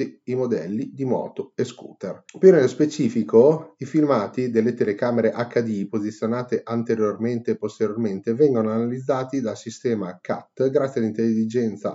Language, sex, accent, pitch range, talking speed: Italian, male, native, 110-130 Hz, 125 wpm